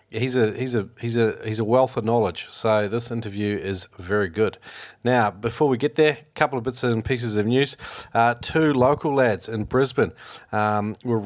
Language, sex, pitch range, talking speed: English, male, 100-120 Hz, 205 wpm